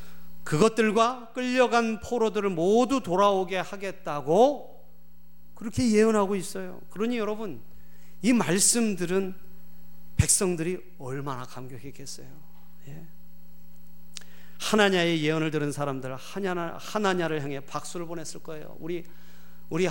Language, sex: Korean, male